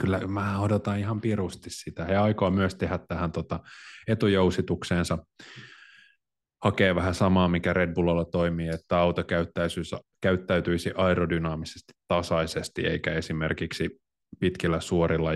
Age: 30-49